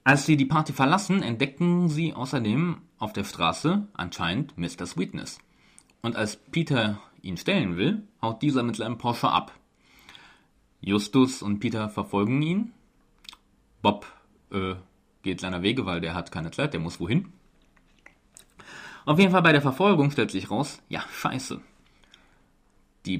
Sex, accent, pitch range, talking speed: male, German, 100-150 Hz, 145 wpm